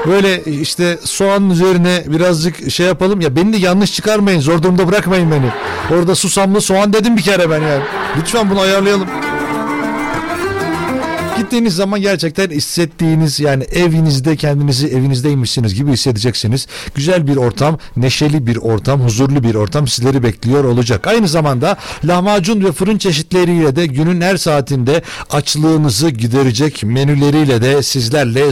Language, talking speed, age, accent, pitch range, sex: Turkish, 135 wpm, 60-79, native, 125-175 Hz, male